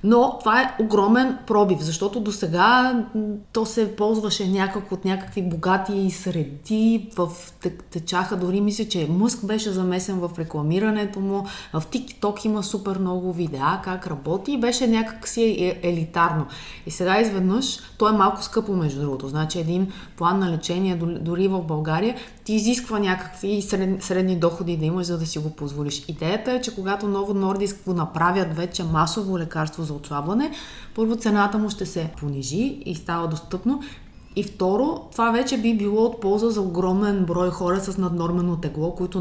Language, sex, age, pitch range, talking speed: Bulgarian, female, 20-39, 165-205 Hz, 165 wpm